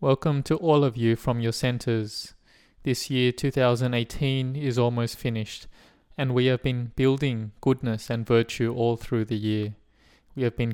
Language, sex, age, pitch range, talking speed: English, male, 20-39, 115-130 Hz, 160 wpm